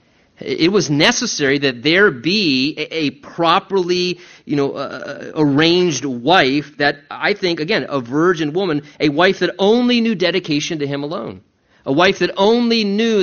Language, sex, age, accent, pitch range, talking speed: English, male, 30-49, American, 145-190 Hz, 155 wpm